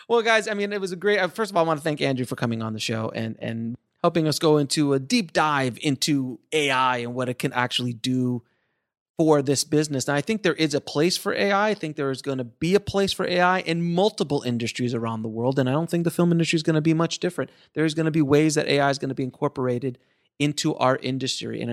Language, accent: English, American